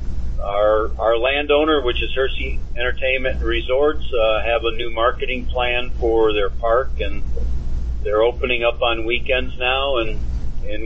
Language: English